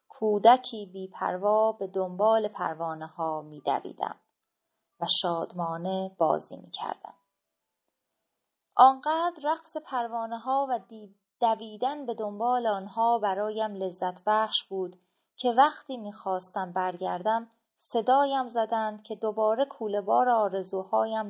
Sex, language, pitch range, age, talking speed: female, Persian, 180-220 Hz, 30-49, 100 wpm